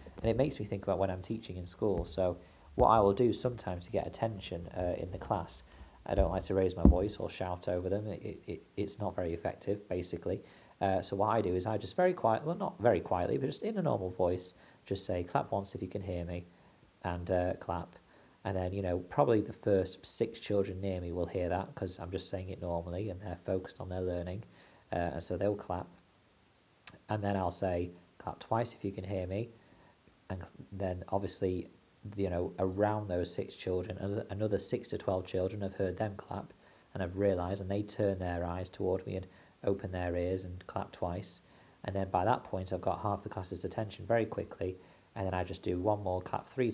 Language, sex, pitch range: English, male, 90-100 Hz